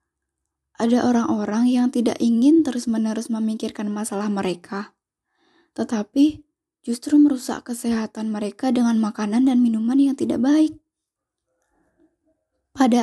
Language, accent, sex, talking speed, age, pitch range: Indonesian, native, female, 100 wpm, 10-29, 225-280 Hz